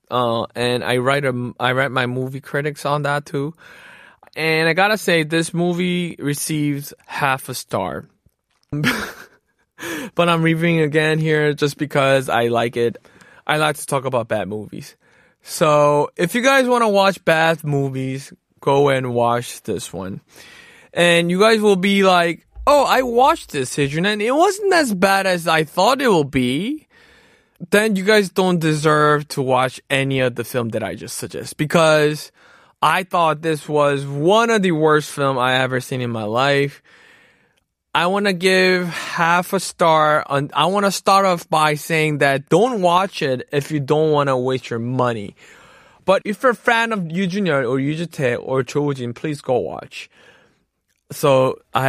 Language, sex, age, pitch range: Korean, male, 20-39, 130-180 Hz